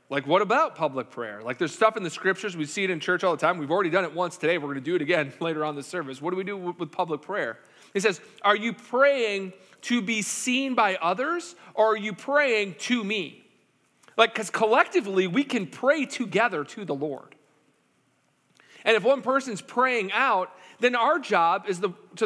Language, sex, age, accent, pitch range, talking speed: English, male, 40-59, American, 170-240 Hz, 215 wpm